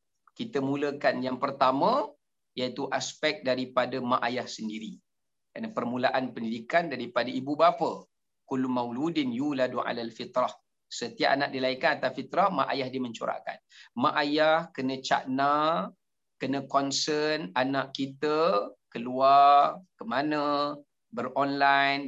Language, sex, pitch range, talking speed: Malay, male, 135-165 Hz, 115 wpm